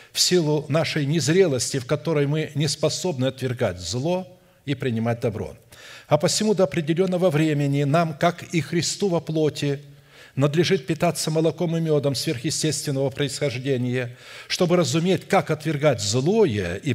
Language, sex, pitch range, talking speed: Russian, male, 130-170 Hz, 135 wpm